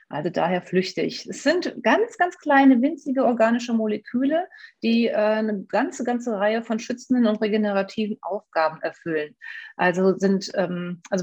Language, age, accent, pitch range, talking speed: German, 40-59, German, 190-235 Hz, 145 wpm